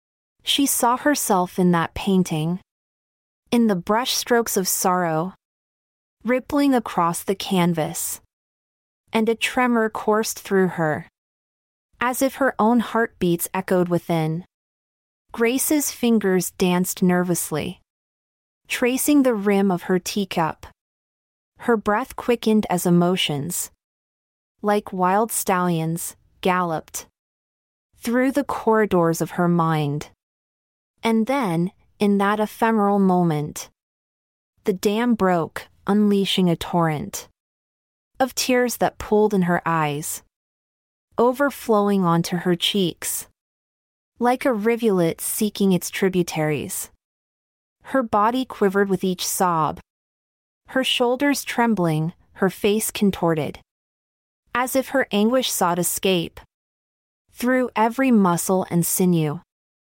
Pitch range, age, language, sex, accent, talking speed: 175-230 Hz, 30-49, English, female, American, 105 wpm